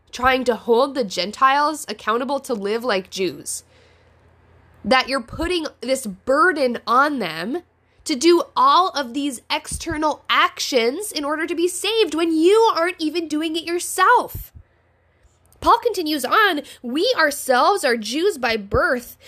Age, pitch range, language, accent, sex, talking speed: 10-29, 220-305 Hz, English, American, female, 140 wpm